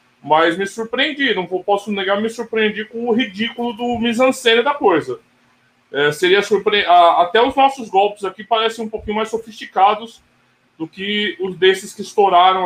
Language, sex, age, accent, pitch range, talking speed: Portuguese, male, 20-39, Brazilian, 145-210 Hz, 165 wpm